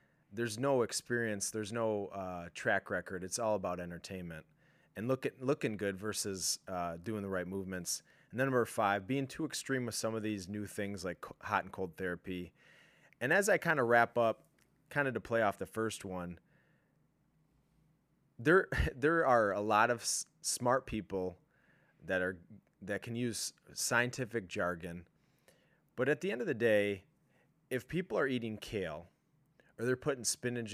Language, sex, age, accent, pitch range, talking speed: English, male, 30-49, American, 95-125 Hz, 170 wpm